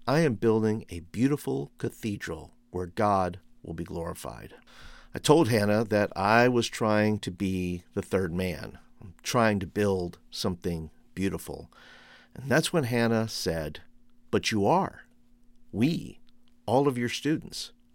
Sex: male